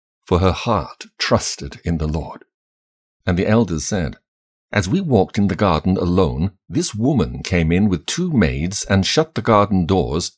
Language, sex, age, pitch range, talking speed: English, male, 60-79, 85-120 Hz, 175 wpm